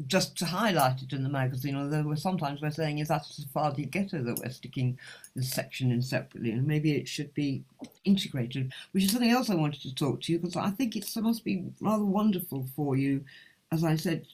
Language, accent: English, British